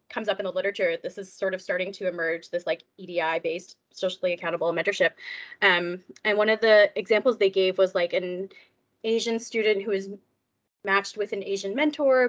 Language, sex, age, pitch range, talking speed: English, female, 20-39, 180-220 Hz, 190 wpm